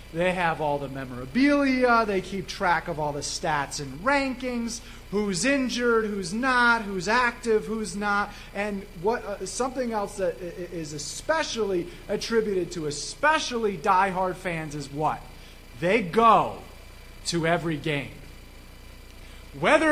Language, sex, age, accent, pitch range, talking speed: English, male, 30-49, American, 165-225 Hz, 130 wpm